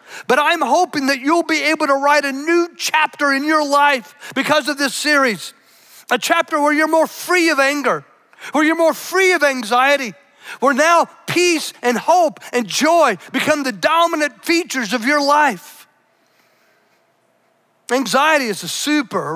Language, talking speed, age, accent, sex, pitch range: English, 160 wpm, 40-59, American, male, 250-315 Hz